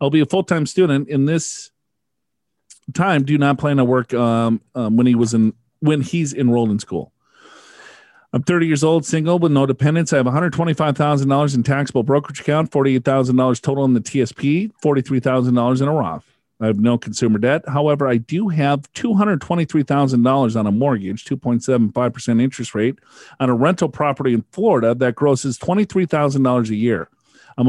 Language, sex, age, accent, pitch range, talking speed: English, male, 40-59, American, 120-150 Hz, 160 wpm